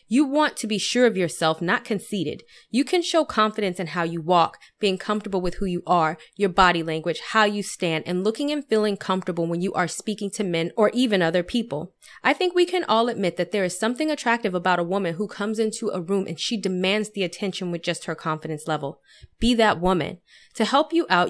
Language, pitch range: English, 175-225 Hz